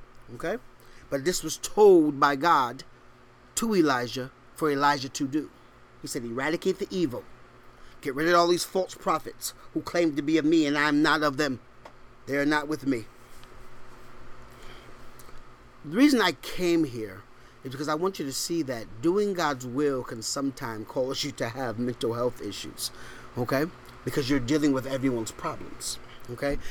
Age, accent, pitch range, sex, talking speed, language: 30-49, American, 125-170 Hz, male, 170 wpm, English